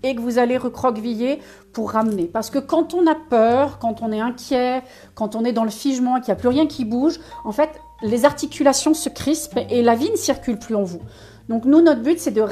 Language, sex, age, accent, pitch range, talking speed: French, female, 40-59, French, 230-295 Hz, 245 wpm